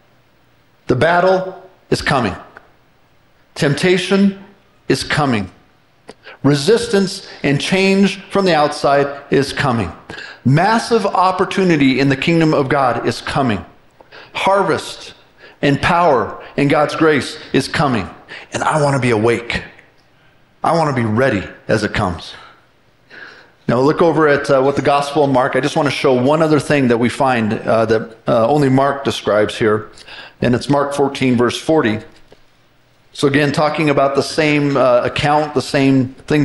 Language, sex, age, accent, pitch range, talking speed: English, male, 50-69, American, 130-160 Hz, 145 wpm